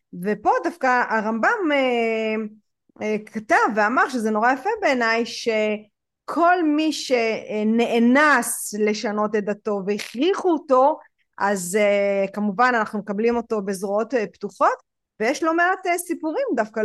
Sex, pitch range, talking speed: female, 215-295 Hz, 105 wpm